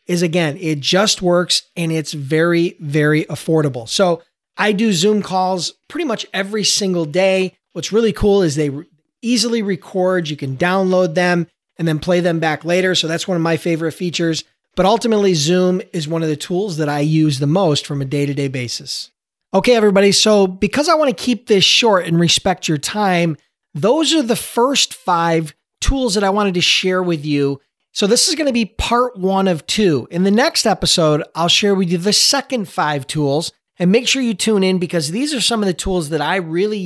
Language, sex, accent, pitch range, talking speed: English, male, American, 160-210 Hz, 205 wpm